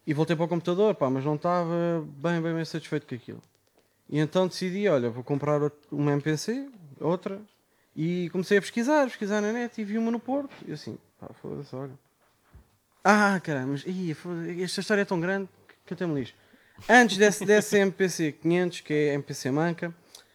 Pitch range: 150-210 Hz